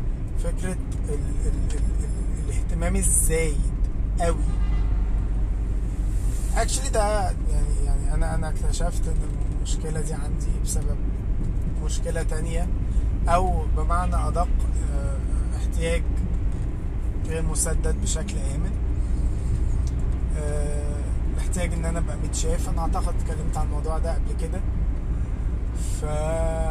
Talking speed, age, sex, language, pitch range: 95 wpm, 20-39, male, Arabic, 65-95 Hz